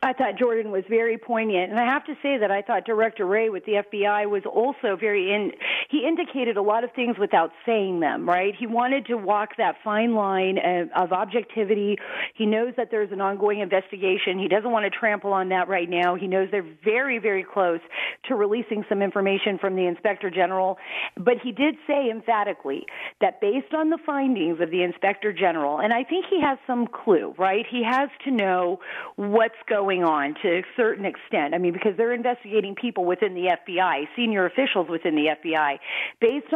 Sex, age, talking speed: female, 40-59, 195 wpm